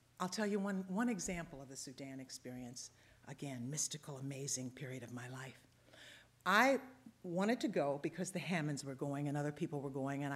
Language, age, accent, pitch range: English, 50-69, American, 145-210 Hz